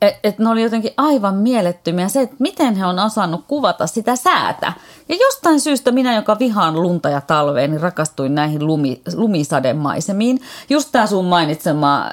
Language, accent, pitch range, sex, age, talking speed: Finnish, native, 150-205 Hz, female, 30-49, 165 wpm